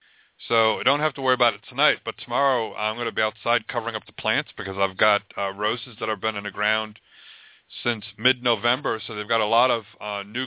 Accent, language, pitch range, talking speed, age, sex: American, English, 110-130 Hz, 235 wpm, 40-59, male